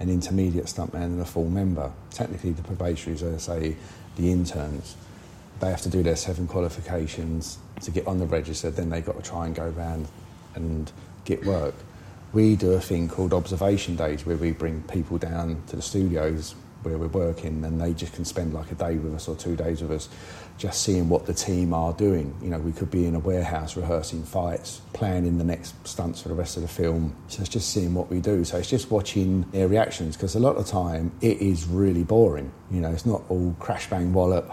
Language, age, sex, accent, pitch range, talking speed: English, 40-59, male, British, 85-95 Hz, 220 wpm